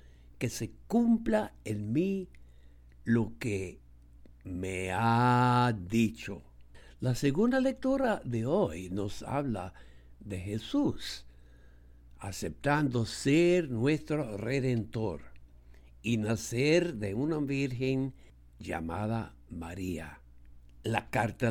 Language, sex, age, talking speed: English, male, 60-79, 90 wpm